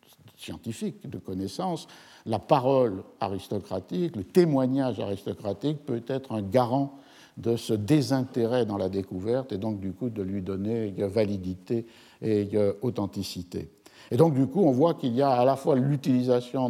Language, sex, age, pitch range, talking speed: French, male, 60-79, 105-125 Hz, 150 wpm